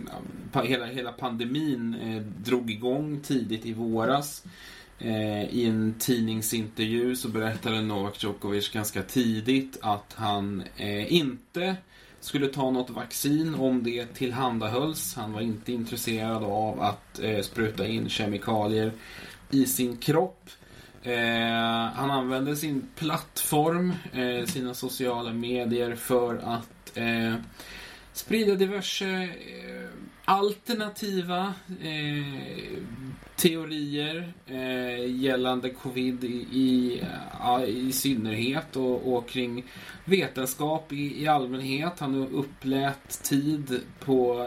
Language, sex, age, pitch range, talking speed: Swedish, male, 20-39, 115-135 Hz, 105 wpm